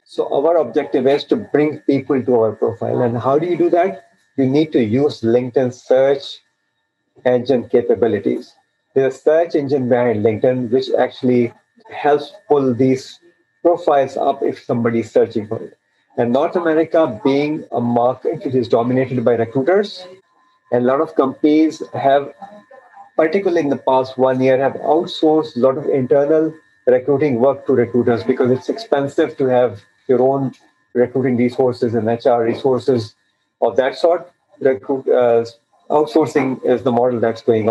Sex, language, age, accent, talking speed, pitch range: male, English, 50-69, Indian, 155 wpm, 120-155 Hz